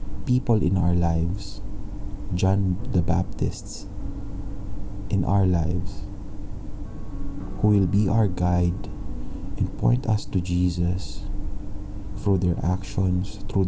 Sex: male